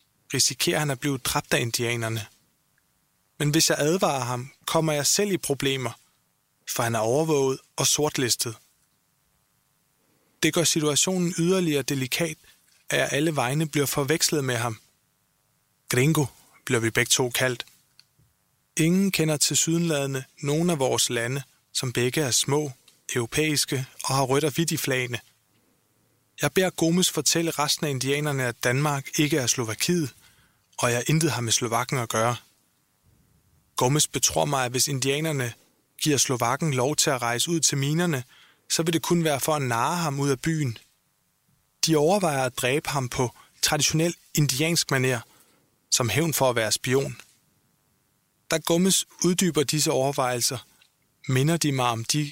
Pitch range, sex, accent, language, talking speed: 125-155 Hz, male, native, Danish, 155 wpm